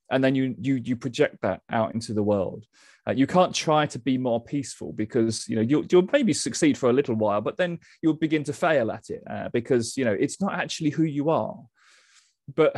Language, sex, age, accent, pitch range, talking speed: English, male, 30-49, British, 115-150 Hz, 230 wpm